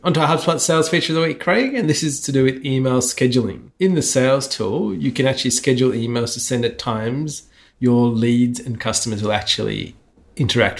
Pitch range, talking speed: 115-140 Hz, 205 wpm